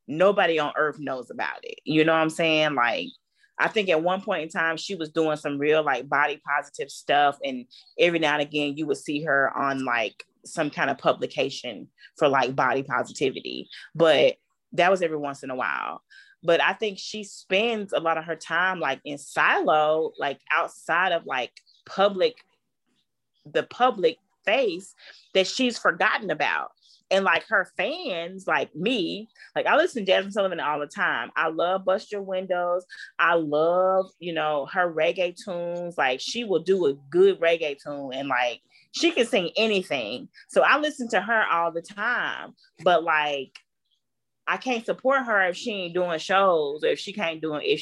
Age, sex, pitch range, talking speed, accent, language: 30-49, female, 150-215 Hz, 185 wpm, American, English